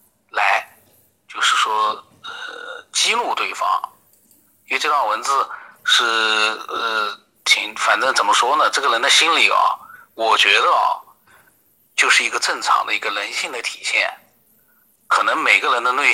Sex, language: male, Chinese